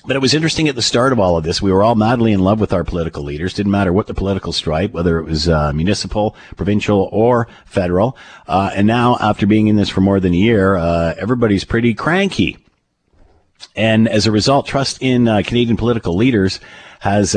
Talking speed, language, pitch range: 215 wpm, English, 90-120 Hz